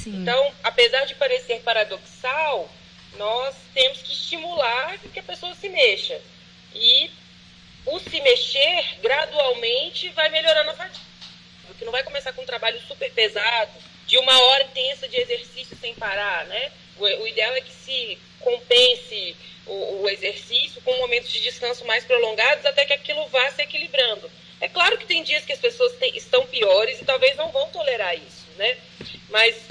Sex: female